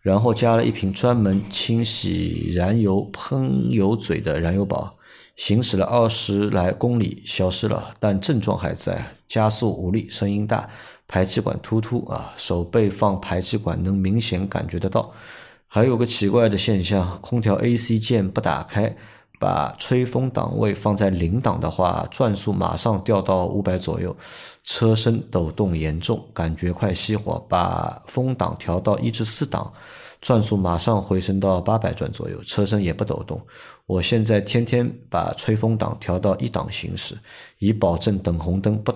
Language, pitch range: Chinese, 95-115 Hz